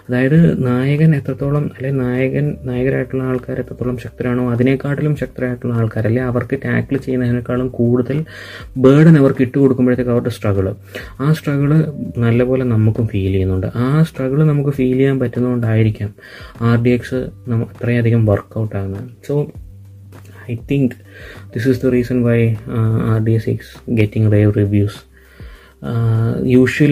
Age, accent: 20-39, native